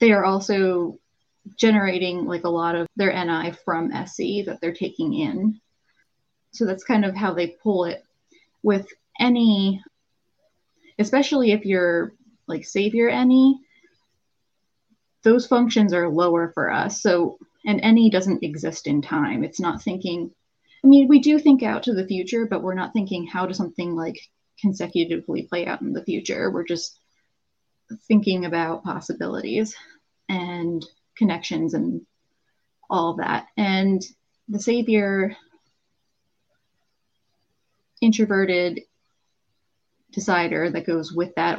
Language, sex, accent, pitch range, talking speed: English, female, American, 170-220 Hz, 130 wpm